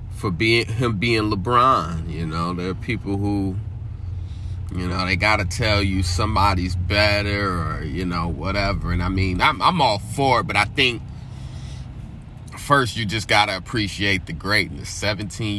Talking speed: 165 wpm